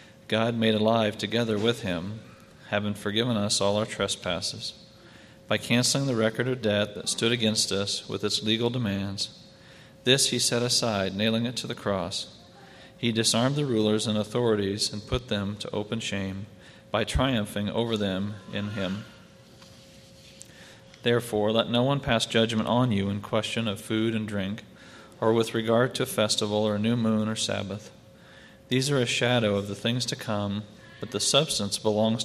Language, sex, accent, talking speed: English, male, American, 170 wpm